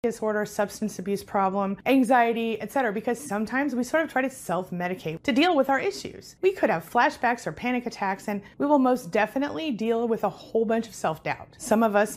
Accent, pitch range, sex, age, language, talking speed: American, 180-235 Hz, female, 30-49, English, 210 wpm